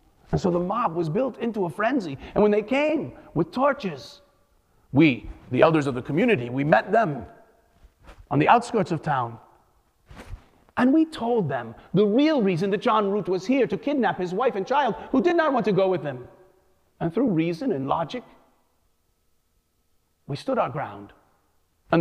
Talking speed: 175 wpm